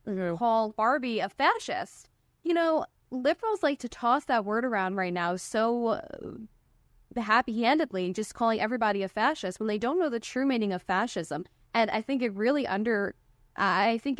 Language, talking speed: English, 165 wpm